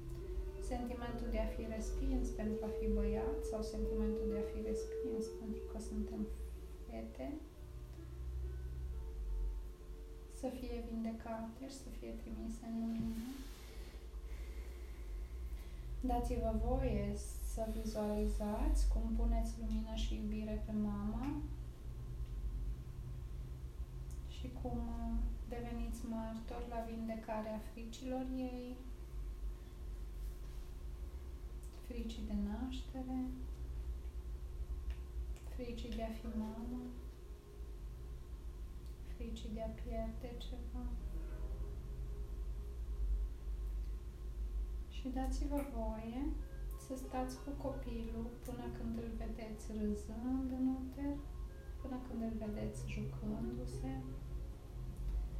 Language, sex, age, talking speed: Romanian, female, 20-39, 85 wpm